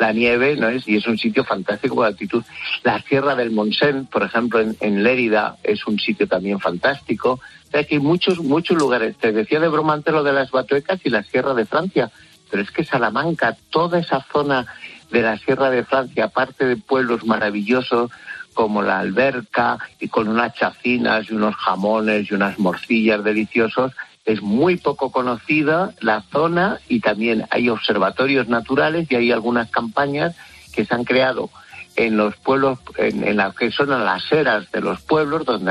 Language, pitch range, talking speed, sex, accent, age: Spanish, 110-135 Hz, 180 wpm, male, Spanish, 60-79